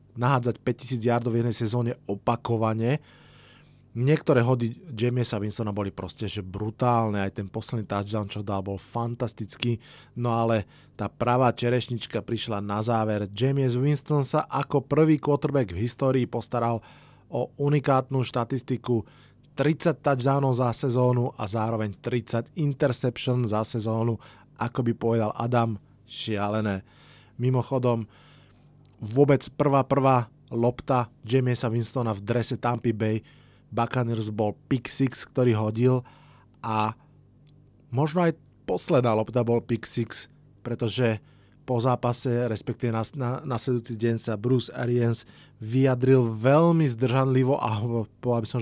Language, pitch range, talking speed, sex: Slovak, 115-130 Hz, 125 wpm, male